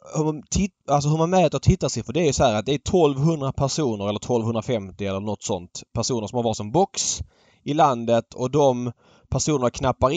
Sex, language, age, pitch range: male, Swedish, 20-39, 110-145 Hz